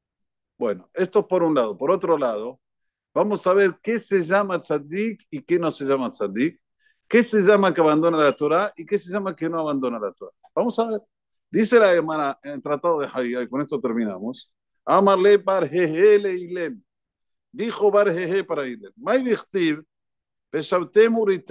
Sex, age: male, 50-69